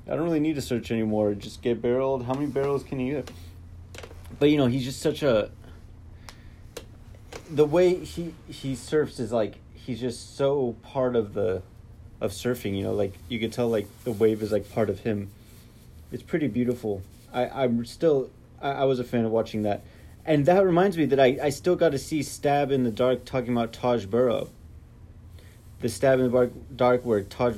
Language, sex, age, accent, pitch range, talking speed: English, male, 30-49, American, 105-130 Hz, 200 wpm